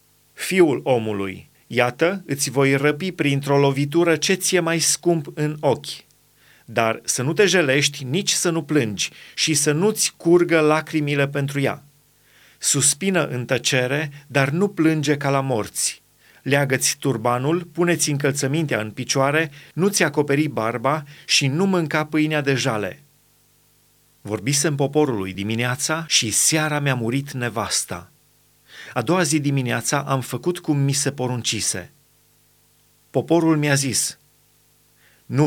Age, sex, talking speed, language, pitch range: 30-49, male, 130 wpm, Romanian, 135-165 Hz